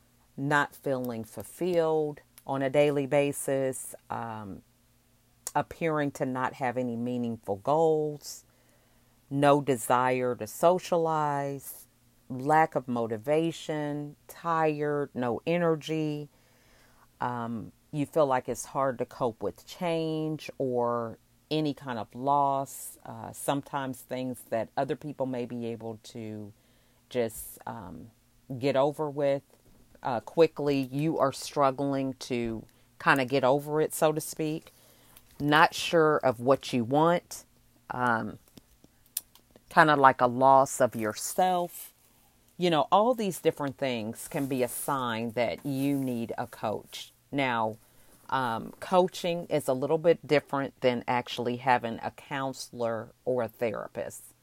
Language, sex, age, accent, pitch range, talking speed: English, female, 40-59, American, 120-150 Hz, 125 wpm